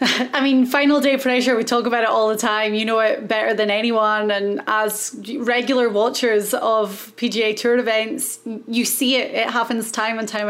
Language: English